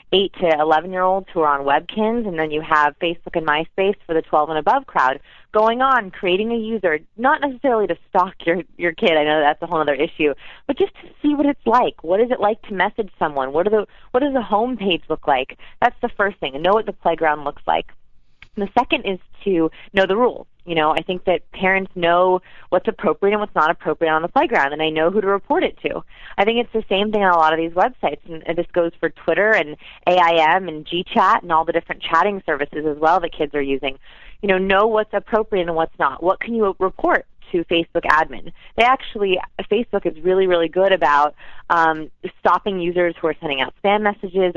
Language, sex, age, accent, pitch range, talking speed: English, female, 30-49, American, 160-205 Hz, 225 wpm